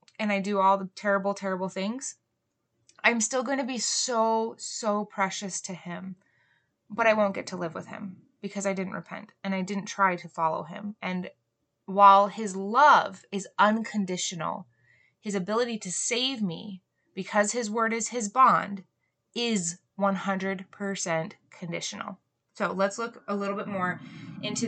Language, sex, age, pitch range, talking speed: English, female, 20-39, 185-220 Hz, 160 wpm